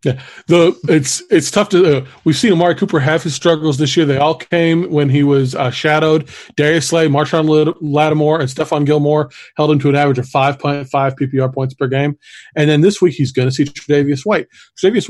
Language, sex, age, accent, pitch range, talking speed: English, male, 40-59, American, 135-160 Hz, 210 wpm